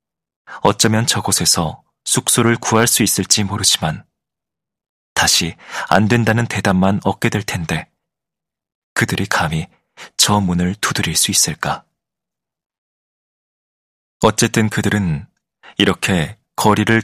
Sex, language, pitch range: male, Korean, 95-115 Hz